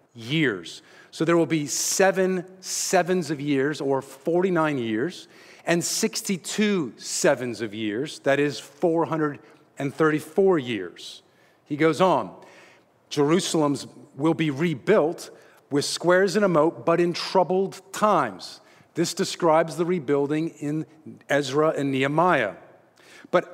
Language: English